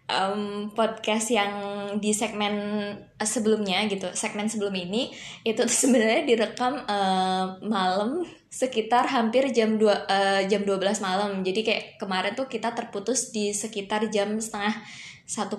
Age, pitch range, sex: 20-39, 200-240 Hz, female